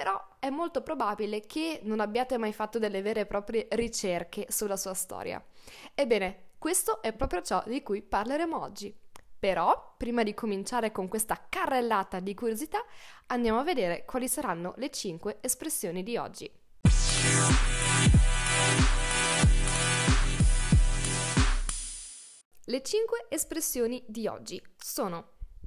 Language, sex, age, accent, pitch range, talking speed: Italian, female, 10-29, native, 195-270 Hz, 120 wpm